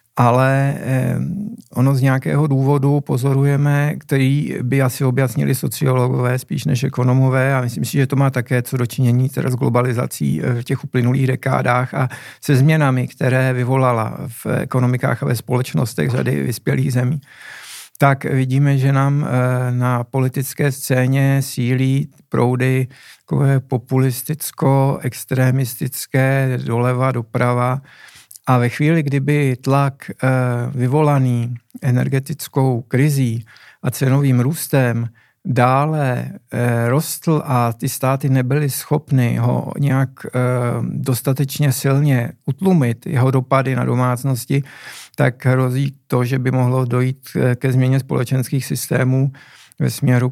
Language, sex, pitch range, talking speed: Czech, male, 125-140 Hz, 115 wpm